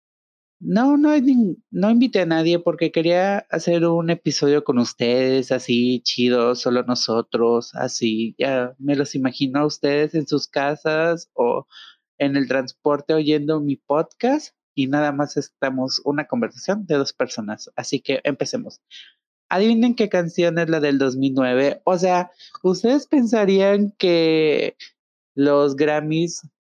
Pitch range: 140-185 Hz